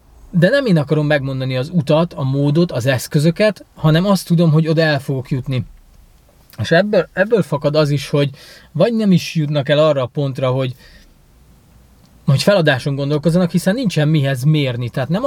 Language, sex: Hungarian, male